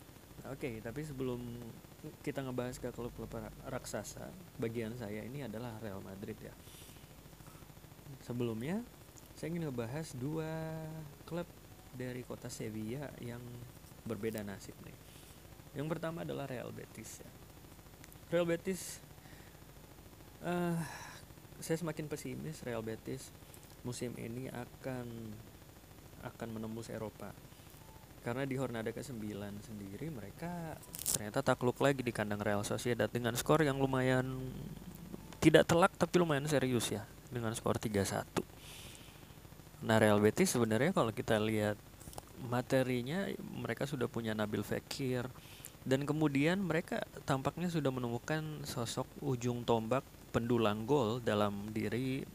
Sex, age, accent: male, 20-39, native